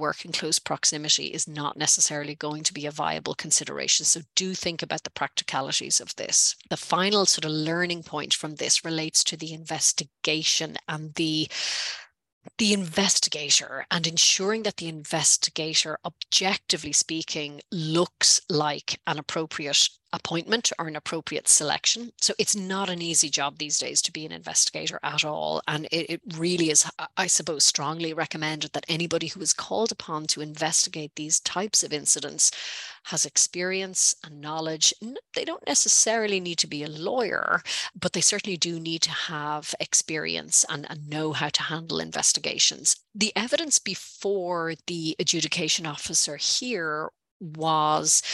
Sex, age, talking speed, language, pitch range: female, 30-49, 155 wpm, English, 150-180 Hz